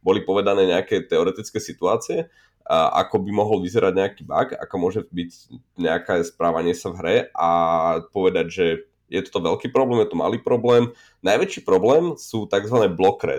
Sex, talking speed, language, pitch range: male, 155 wpm, Slovak, 95-115 Hz